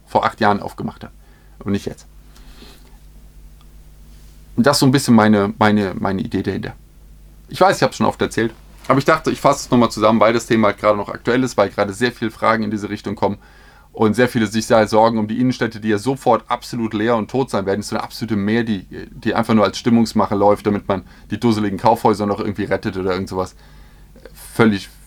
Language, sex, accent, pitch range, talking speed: German, male, German, 100-120 Hz, 220 wpm